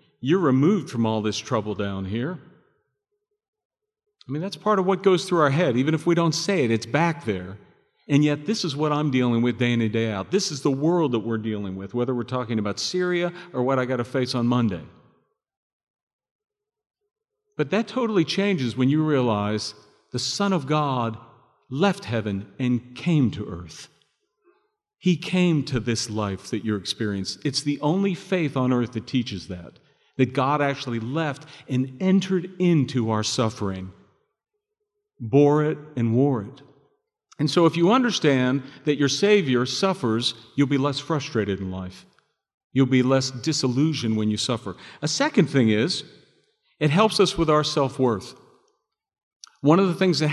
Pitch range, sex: 120-175 Hz, male